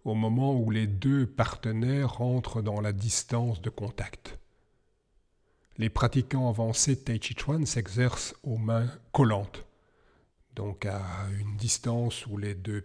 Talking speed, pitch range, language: 135 wpm, 110-130 Hz, French